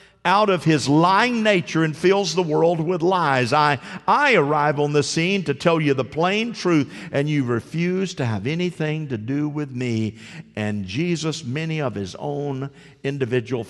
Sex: male